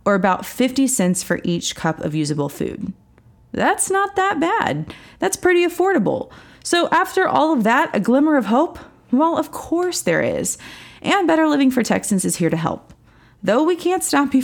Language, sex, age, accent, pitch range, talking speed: English, female, 30-49, American, 170-260 Hz, 185 wpm